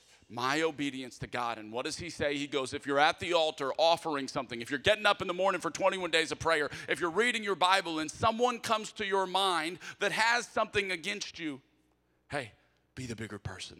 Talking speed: 220 wpm